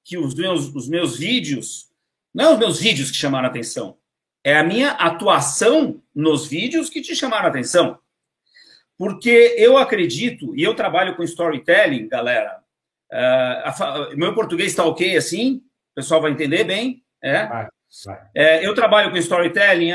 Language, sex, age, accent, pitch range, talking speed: Portuguese, male, 50-69, Brazilian, 160-225 Hz, 155 wpm